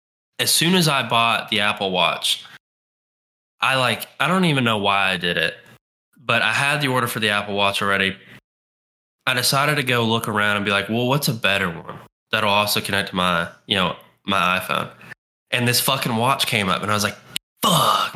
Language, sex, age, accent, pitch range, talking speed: English, male, 10-29, American, 100-130 Hz, 205 wpm